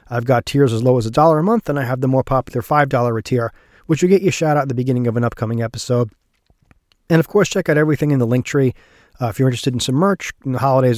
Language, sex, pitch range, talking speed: English, male, 120-150 Hz, 280 wpm